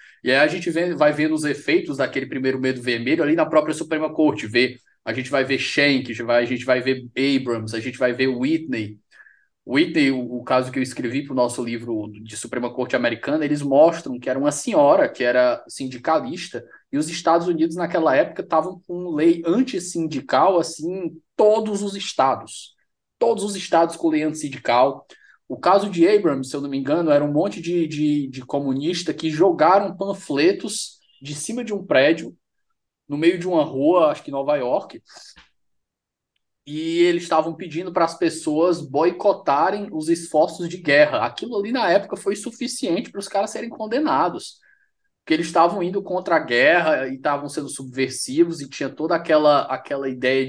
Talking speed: 180 wpm